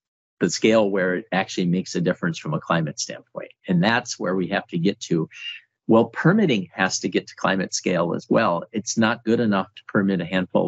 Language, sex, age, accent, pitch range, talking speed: English, male, 50-69, American, 90-110 Hz, 215 wpm